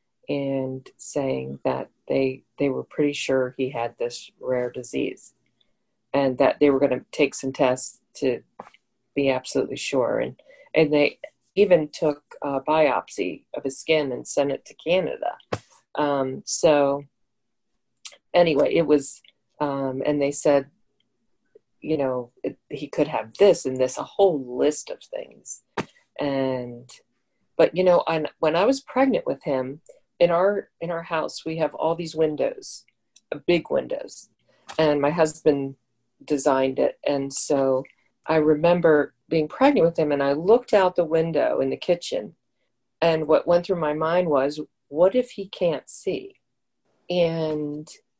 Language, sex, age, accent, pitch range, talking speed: English, female, 40-59, American, 135-165 Hz, 150 wpm